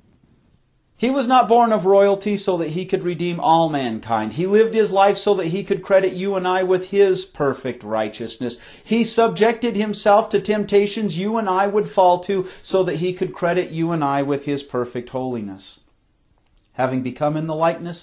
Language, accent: English, American